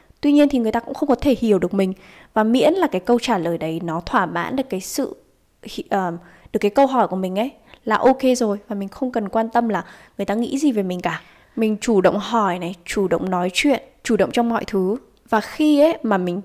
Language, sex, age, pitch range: Vietnamese, female, 20-39, 190-240 Hz